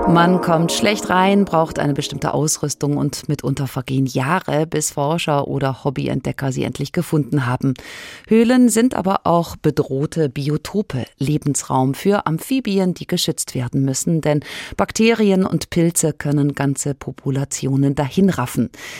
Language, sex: German, female